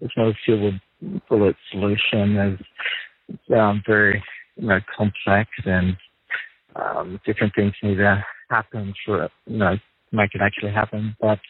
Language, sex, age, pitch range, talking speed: English, male, 50-69, 100-115 Hz, 140 wpm